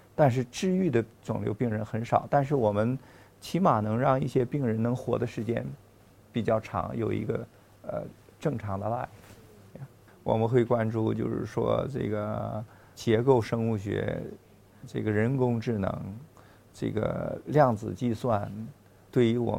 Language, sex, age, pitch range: Chinese, male, 50-69, 105-130 Hz